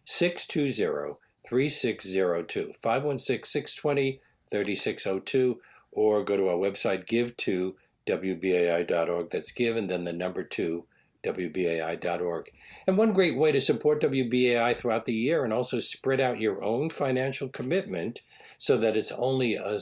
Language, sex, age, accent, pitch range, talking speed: English, male, 50-69, American, 110-150 Hz, 125 wpm